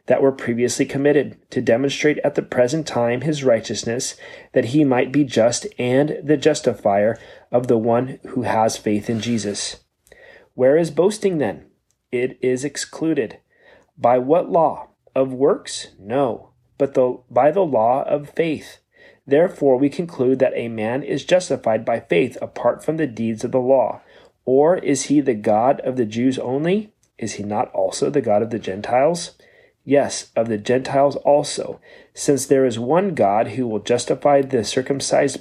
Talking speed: 165 wpm